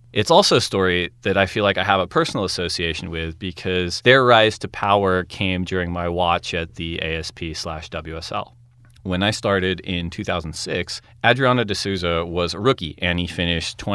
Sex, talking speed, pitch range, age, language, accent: male, 175 wpm, 85-120 Hz, 30-49, English, American